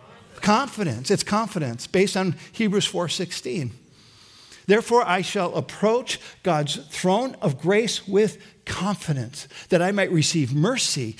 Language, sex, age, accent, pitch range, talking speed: English, male, 50-69, American, 140-195 Hz, 125 wpm